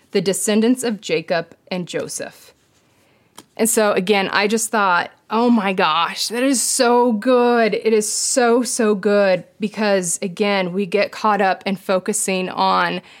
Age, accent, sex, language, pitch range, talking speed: 30-49, American, female, English, 190-220 Hz, 145 wpm